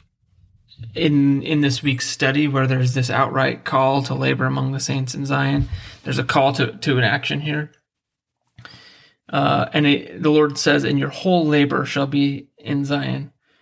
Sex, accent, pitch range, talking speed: male, American, 130-150 Hz, 170 wpm